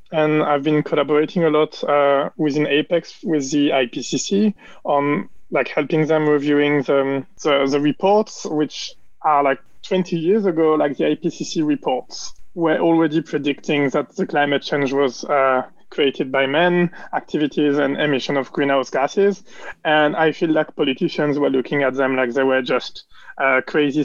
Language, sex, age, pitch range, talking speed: English, male, 20-39, 140-160 Hz, 160 wpm